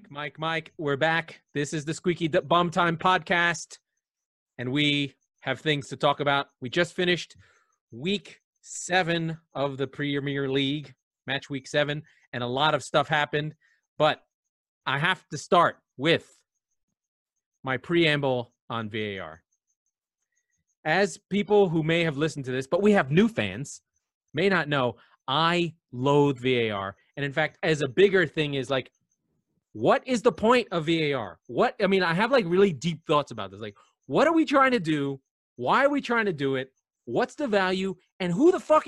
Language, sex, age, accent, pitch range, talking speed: English, male, 30-49, American, 145-225 Hz, 175 wpm